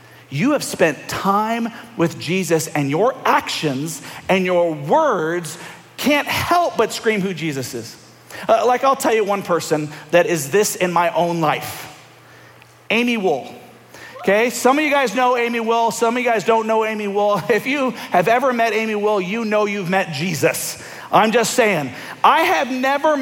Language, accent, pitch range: English, American, 180-250 Hz